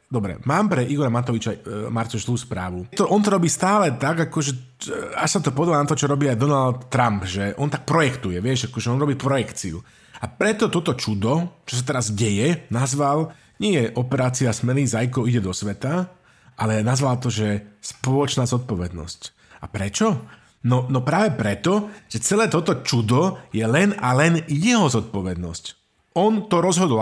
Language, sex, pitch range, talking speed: Slovak, male, 115-155 Hz, 175 wpm